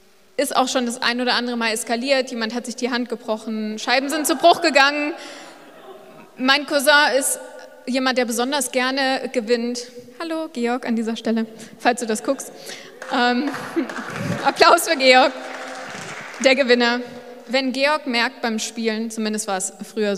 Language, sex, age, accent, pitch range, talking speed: German, female, 20-39, German, 220-270 Hz, 155 wpm